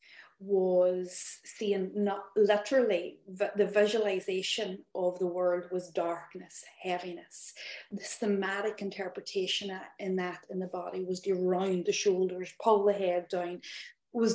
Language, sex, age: English, female, 40-59